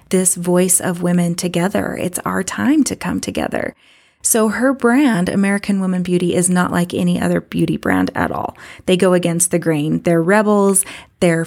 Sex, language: female, English